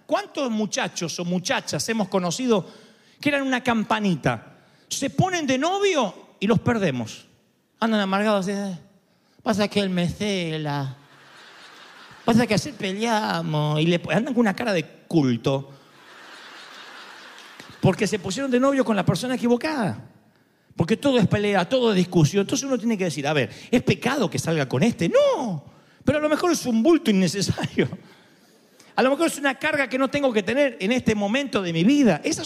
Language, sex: Spanish, male